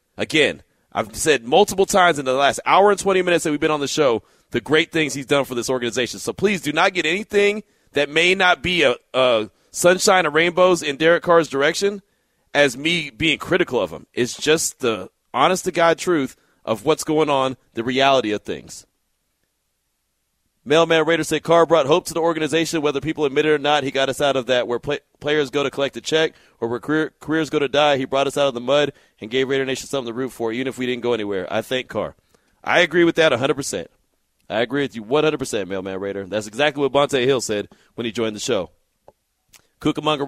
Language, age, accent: English, 30-49, American